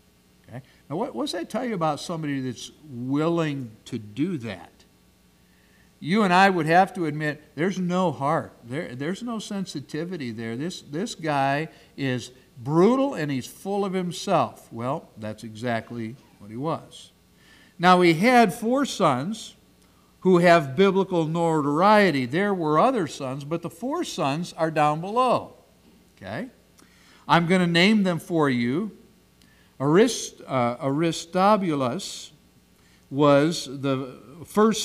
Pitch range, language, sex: 125-180 Hz, English, male